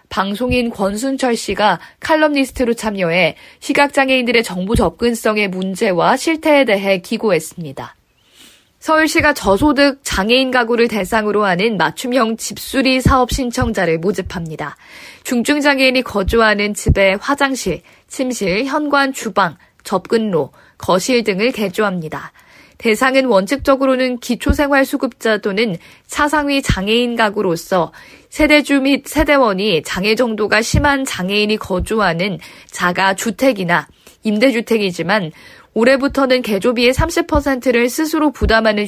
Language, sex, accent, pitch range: Korean, female, native, 195-265 Hz